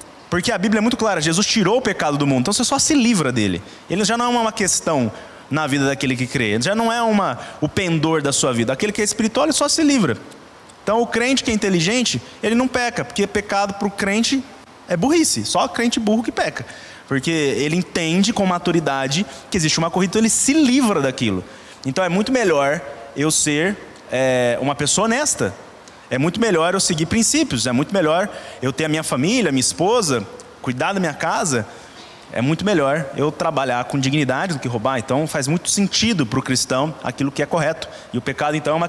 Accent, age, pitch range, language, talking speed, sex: Brazilian, 20-39, 140-220 Hz, Portuguese, 215 wpm, male